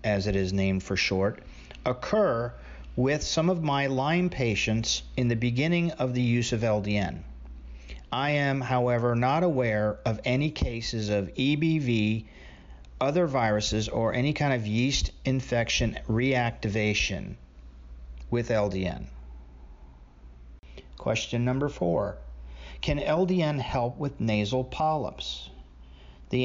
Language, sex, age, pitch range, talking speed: English, male, 40-59, 85-130 Hz, 120 wpm